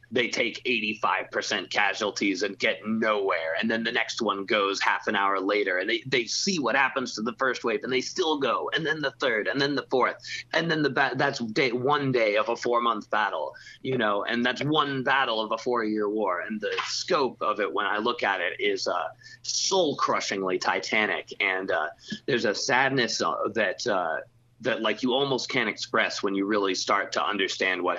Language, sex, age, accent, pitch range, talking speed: English, male, 30-49, American, 105-150 Hz, 210 wpm